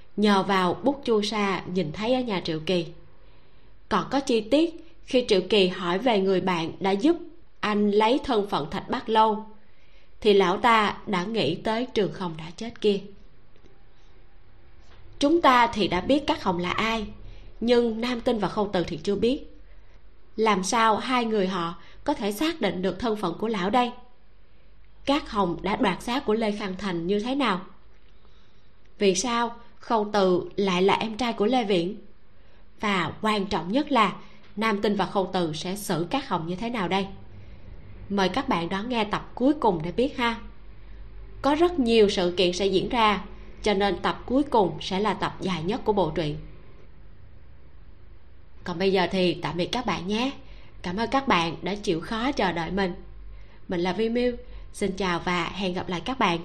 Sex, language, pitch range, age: female, Vietnamese, 175-225 Hz, 20-39